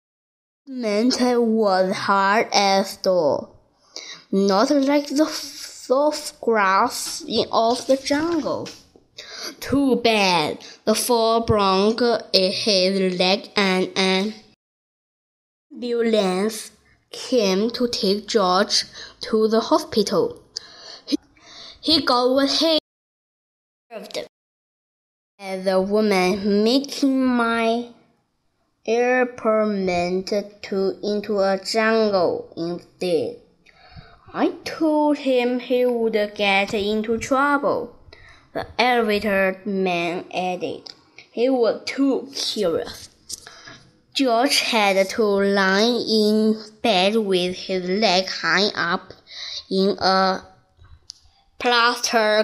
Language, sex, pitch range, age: Chinese, female, 195-245 Hz, 10-29